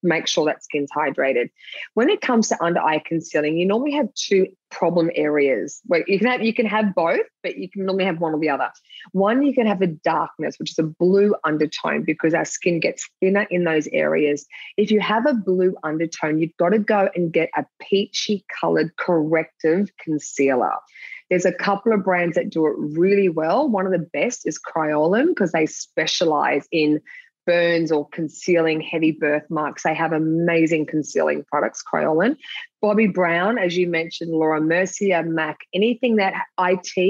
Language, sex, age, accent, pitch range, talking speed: English, female, 20-39, Australian, 160-205 Hz, 180 wpm